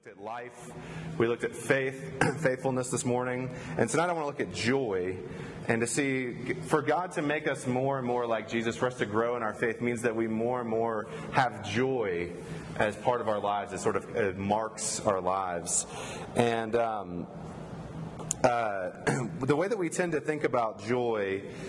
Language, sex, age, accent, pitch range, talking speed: English, male, 30-49, American, 120-150 Hz, 190 wpm